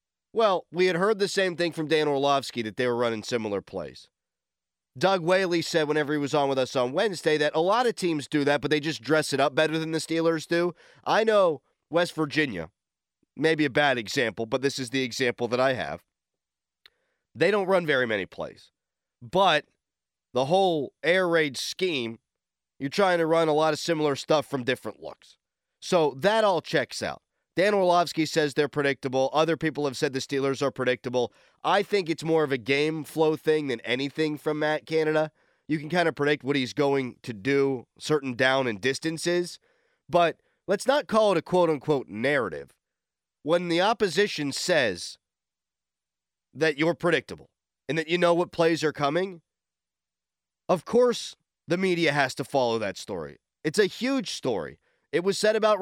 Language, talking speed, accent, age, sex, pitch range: English, 185 wpm, American, 30-49, male, 135-175 Hz